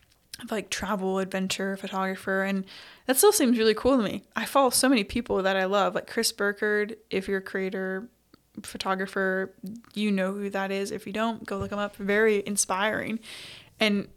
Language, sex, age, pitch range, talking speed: English, female, 20-39, 190-220 Hz, 185 wpm